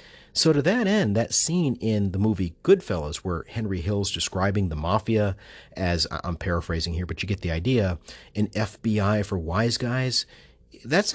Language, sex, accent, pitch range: English, male, American, 90-120 Hz